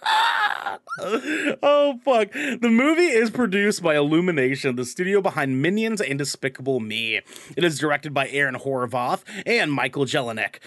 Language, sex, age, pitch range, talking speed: English, male, 30-49, 135-200 Hz, 135 wpm